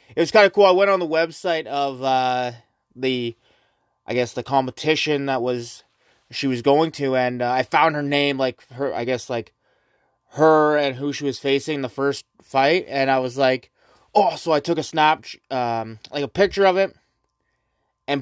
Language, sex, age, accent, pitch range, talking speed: English, male, 20-39, American, 135-180 Hz, 200 wpm